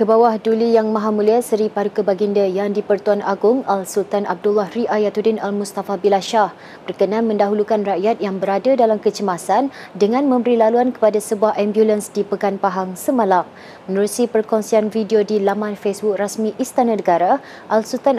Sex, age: female, 30-49